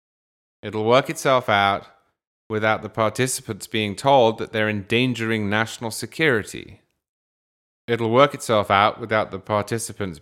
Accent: British